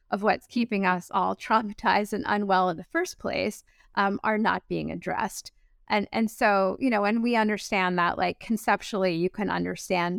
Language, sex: English, female